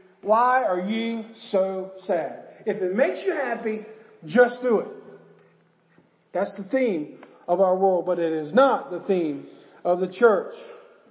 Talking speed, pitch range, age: 150 wpm, 215-275 Hz, 40-59